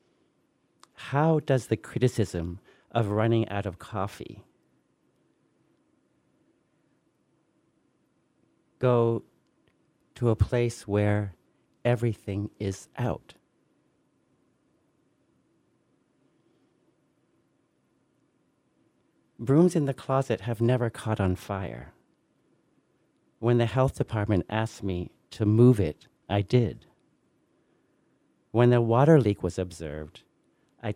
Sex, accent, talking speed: male, American, 85 wpm